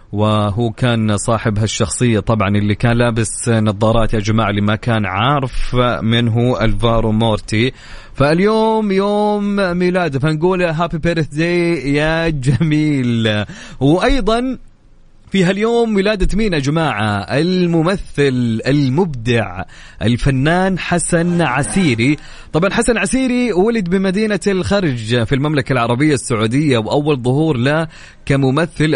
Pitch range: 115-160 Hz